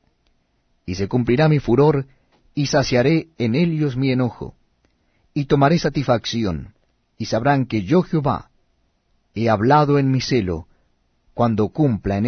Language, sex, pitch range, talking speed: Spanish, male, 105-140 Hz, 130 wpm